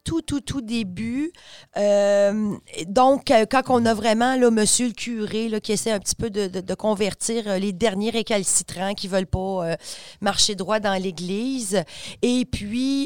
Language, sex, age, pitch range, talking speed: French, female, 40-59, 200-255 Hz, 170 wpm